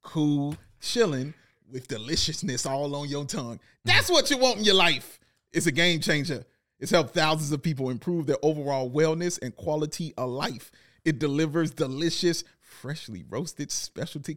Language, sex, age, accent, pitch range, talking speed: English, male, 30-49, American, 135-170 Hz, 160 wpm